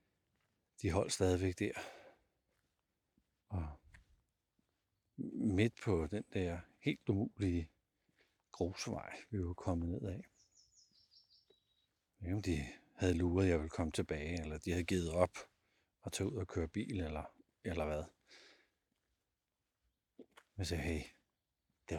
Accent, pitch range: native, 80-100 Hz